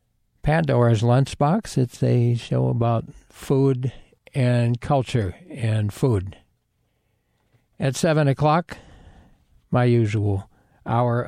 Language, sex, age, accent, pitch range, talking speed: English, male, 60-79, American, 110-140 Hz, 90 wpm